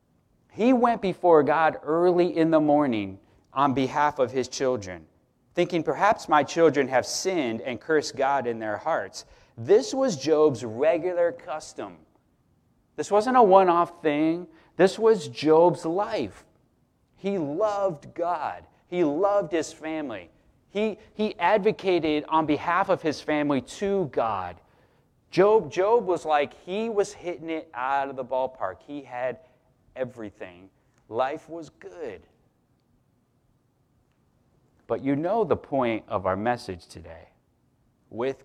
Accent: American